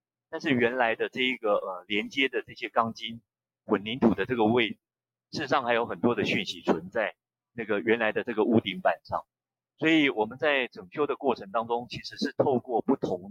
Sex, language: male, Chinese